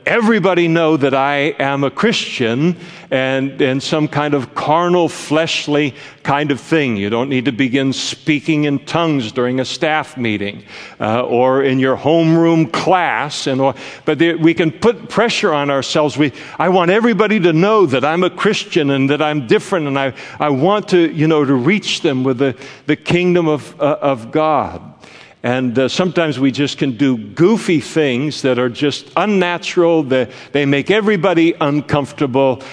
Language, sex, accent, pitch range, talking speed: English, male, American, 130-165 Hz, 175 wpm